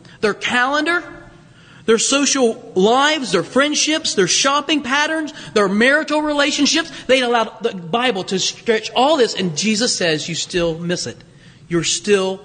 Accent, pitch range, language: American, 155-230 Hz, English